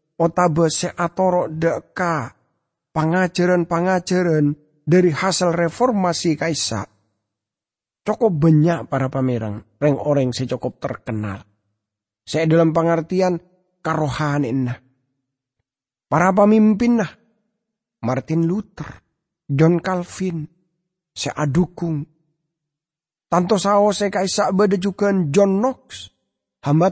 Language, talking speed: English, 75 wpm